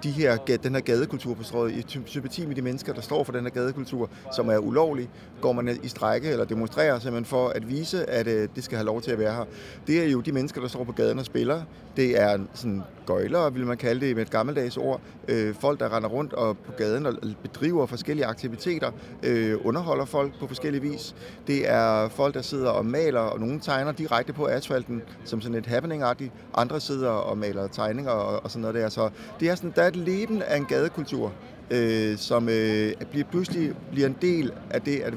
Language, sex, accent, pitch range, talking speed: Danish, male, native, 115-150 Hz, 215 wpm